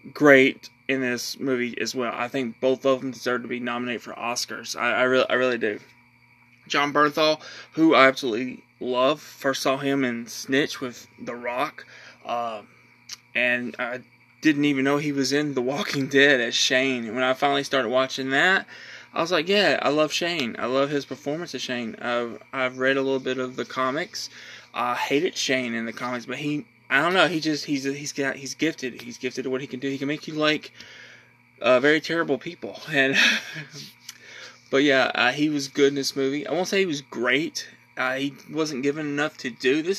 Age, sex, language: 20-39, male, English